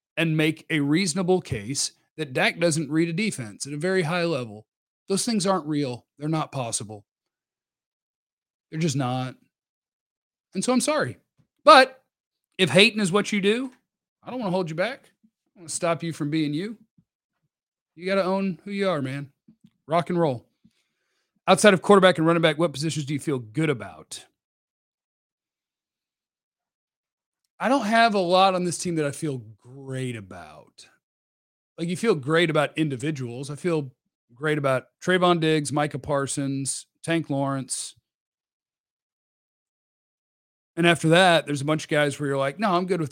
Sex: male